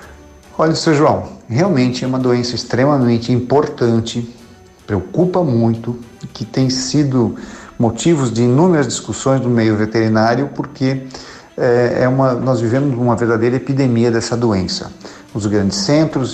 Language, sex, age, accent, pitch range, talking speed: Portuguese, male, 50-69, Brazilian, 115-140 Hz, 130 wpm